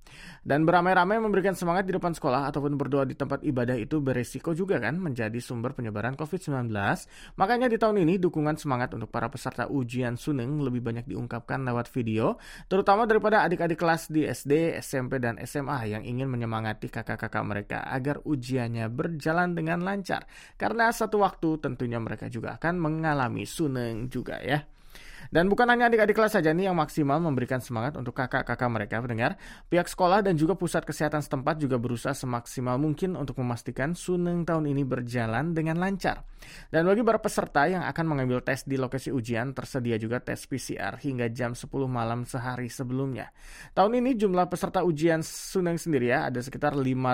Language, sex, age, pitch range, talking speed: English, male, 20-39, 125-170 Hz, 165 wpm